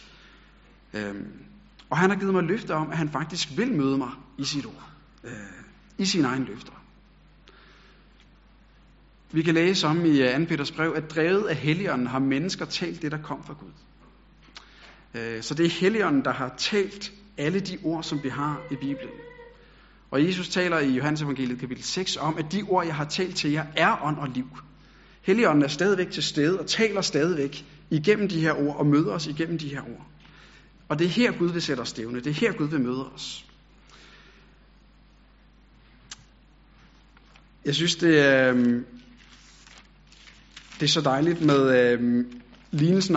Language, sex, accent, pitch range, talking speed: Danish, male, native, 135-180 Hz, 170 wpm